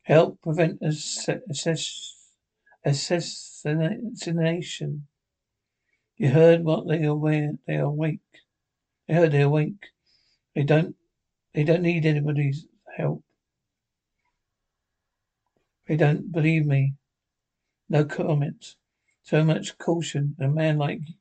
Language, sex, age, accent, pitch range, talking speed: English, male, 60-79, British, 145-165 Hz, 105 wpm